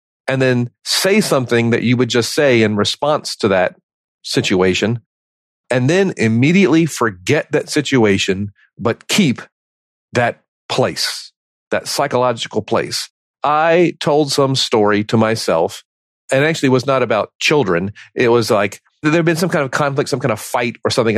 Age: 40-59